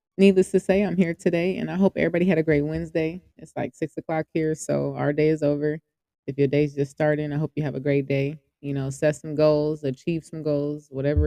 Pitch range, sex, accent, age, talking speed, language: 140-160 Hz, female, American, 20-39, 240 wpm, English